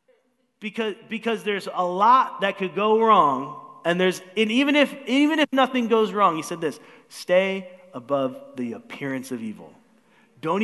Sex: male